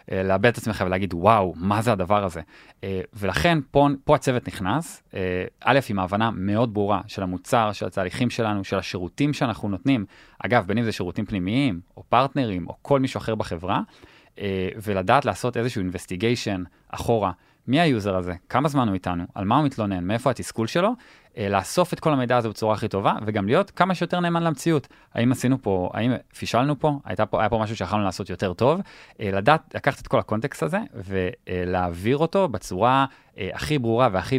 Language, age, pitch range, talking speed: Hebrew, 20-39, 95-130 Hz, 175 wpm